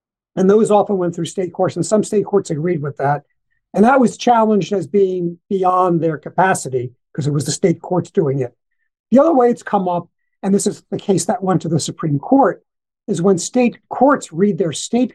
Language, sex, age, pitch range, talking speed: English, male, 60-79, 165-205 Hz, 220 wpm